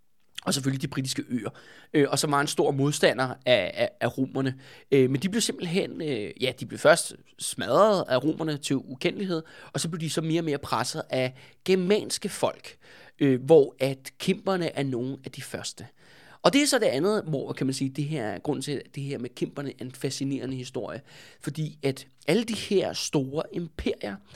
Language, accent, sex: Danish, native, male